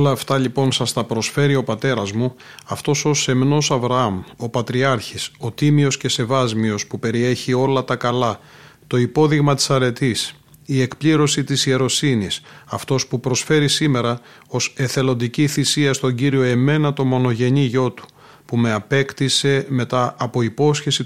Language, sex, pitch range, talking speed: Greek, male, 120-145 Hz, 150 wpm